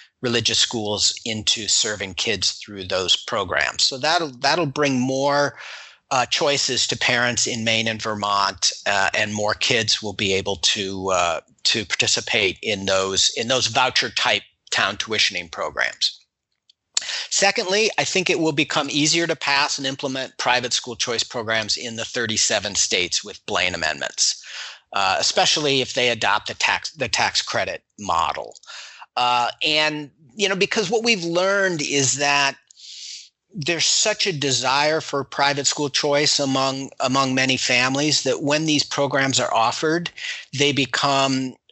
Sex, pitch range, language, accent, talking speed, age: male, 120-155 Hz, English, American, 150 wpm, 40-59